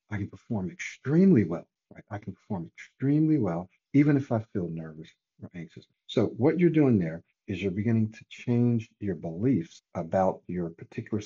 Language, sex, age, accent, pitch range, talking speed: English, male, 60-79, American, 95-135 Hz, 175 wpm